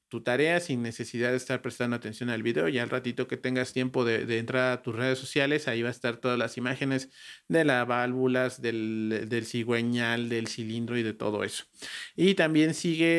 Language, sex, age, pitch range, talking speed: Spanish, male, 40-59, 120-150 Hz, 205 wpm